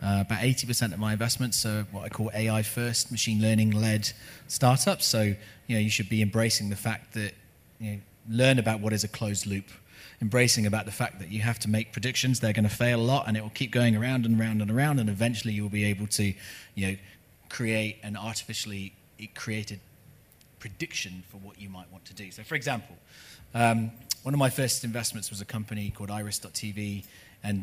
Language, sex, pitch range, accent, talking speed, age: English, male, 100-120 Hz, British, 200 wpm, 30-49